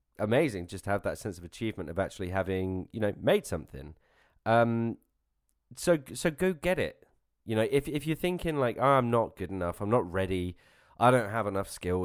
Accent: British